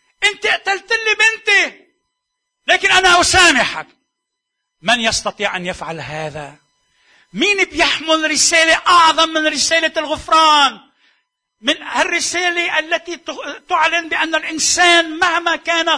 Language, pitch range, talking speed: Arabic, 275-350 Hz, 100 wpm